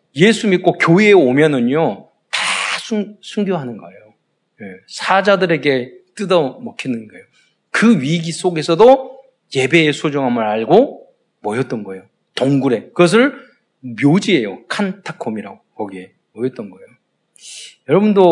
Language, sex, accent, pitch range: Korean, male, native, 115-175 Hz